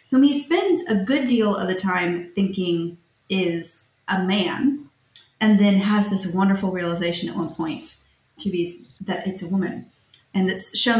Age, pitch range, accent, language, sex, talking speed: 20-39, 180-255 Hz, American, English, female, 165 wpm